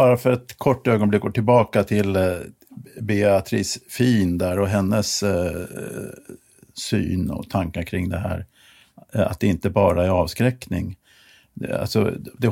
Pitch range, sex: 95-120 Hz, male